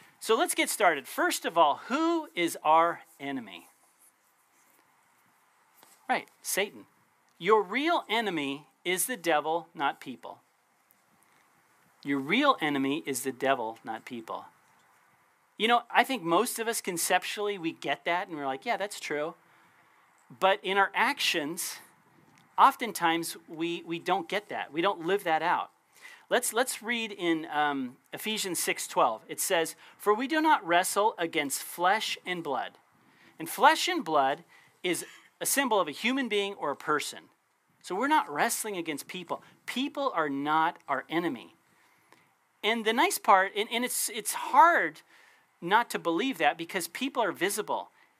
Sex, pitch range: male, 165-255 Hz